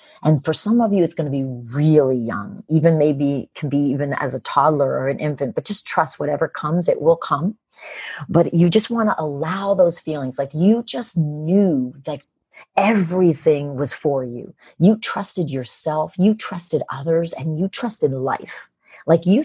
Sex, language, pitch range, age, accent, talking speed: female, English, 150-205 Hz, 40-59, American, 185 wpm